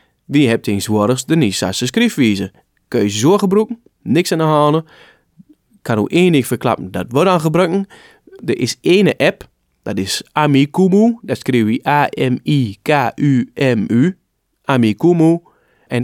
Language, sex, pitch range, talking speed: English, male, 110-150 Hz, 140 wpm